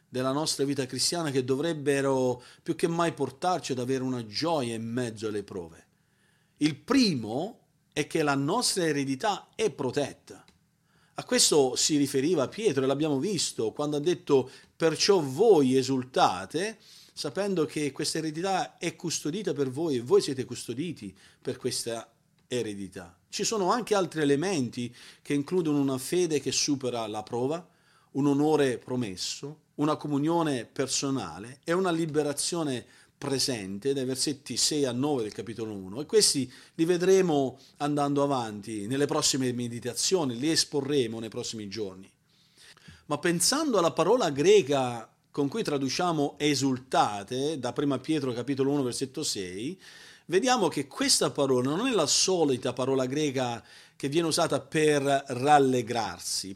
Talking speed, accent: 140 wpm, native